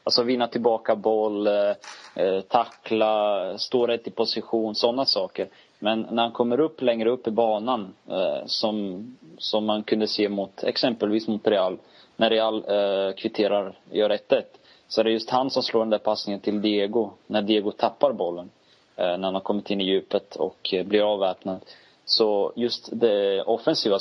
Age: 20-39